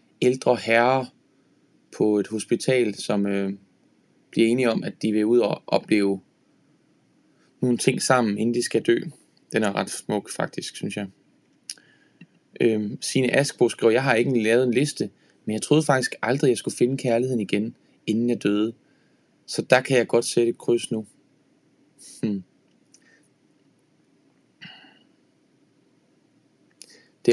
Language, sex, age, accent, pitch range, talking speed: Danish, male, 20-39, native, 105-125 Hz, 145 wpm